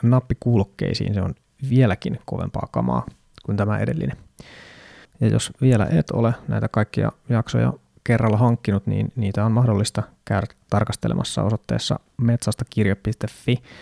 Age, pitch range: 20-39, 105-120 Hz